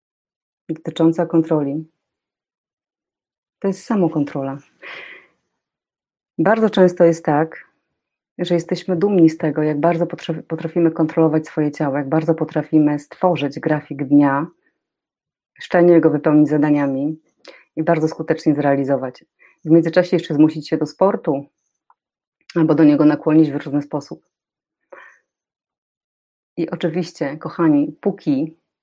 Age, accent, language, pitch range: 30-49, native, Polish, 155-180 Hz